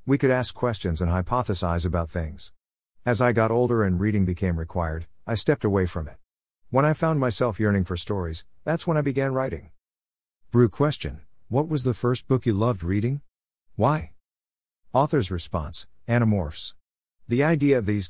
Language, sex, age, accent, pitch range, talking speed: English, male, 50-69, American, 85-120 Hz, 170 wpm